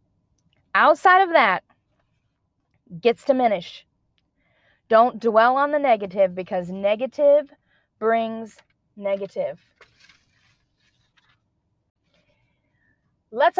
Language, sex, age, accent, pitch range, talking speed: English, female, 30-49, American, 220-290 Hz, 65 wpm